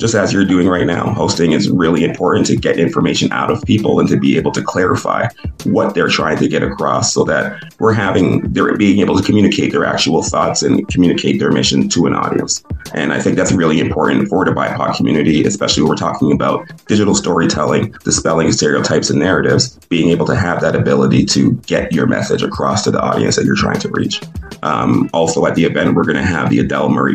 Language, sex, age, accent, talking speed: English, male, 30-49, American, 220 wpm